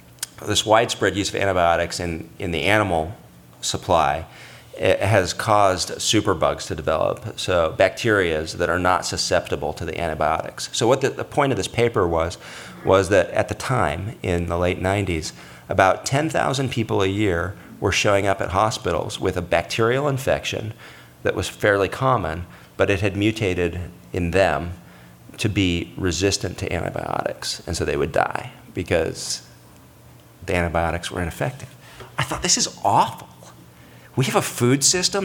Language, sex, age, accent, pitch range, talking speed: English, male, 40-59, American, 85-115 Hz, 155 wpm